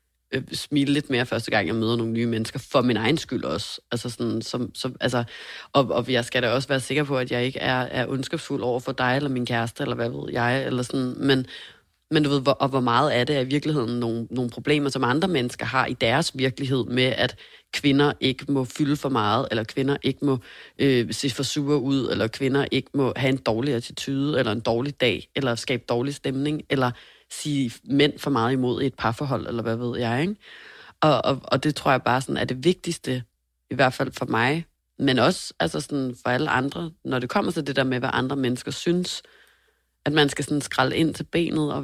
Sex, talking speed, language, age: female, 230 wpm, Danish, 30-49